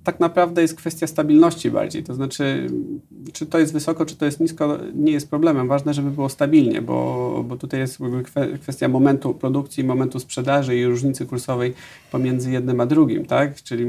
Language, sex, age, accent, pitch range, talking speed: Polish, male, 40-59, native, 120-150 Hz, 175 wpm